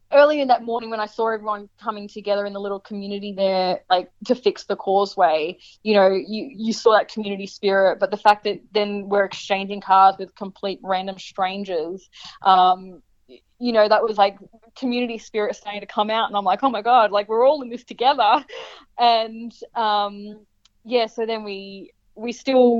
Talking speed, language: 190 wpm, English